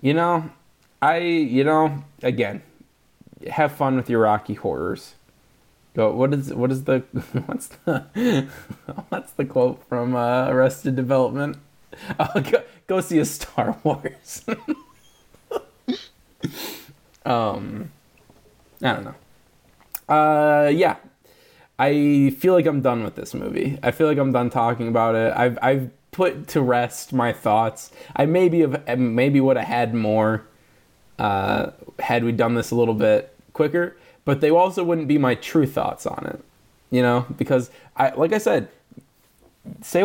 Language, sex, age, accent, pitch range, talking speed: English, male, 20-39, American, 120-155 Hz, 145 wpm